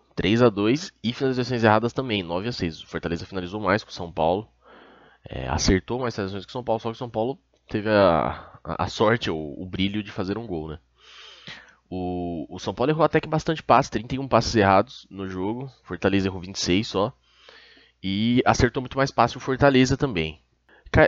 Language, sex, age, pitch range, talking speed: Portuguese, male, 20-39, 90-115 Hz, 195 wpm